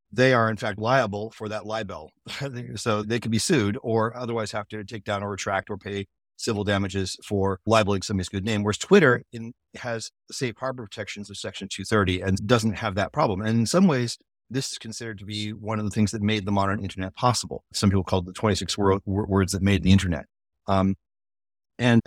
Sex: male